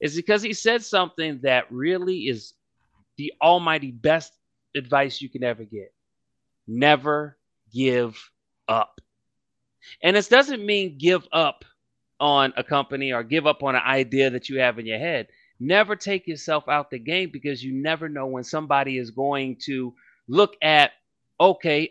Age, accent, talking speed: 30-49, American, 160 wpm